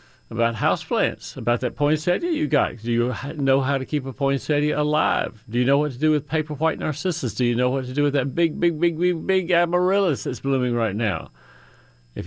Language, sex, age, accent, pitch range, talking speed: English, male, 60-79, American, 115-160 Hz, 220 wpm